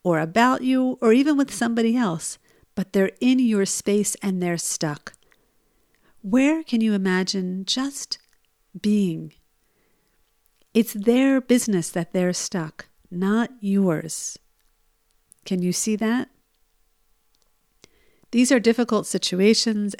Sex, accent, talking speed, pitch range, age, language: female, American, 115 wpm, 185-235 Hz, 50-69, English